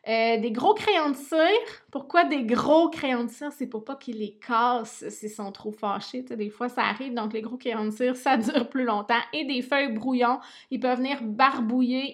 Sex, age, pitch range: female, 20-39, 210-245 Hz